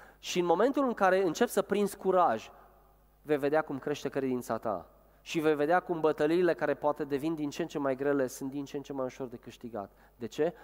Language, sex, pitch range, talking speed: Romanian, male, 125-170 Hz, 225 wpm